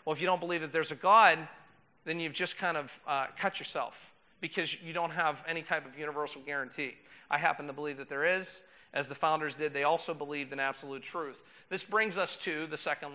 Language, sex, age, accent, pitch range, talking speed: English, male, 40-59, American, 150-185 Hz, 225 wpm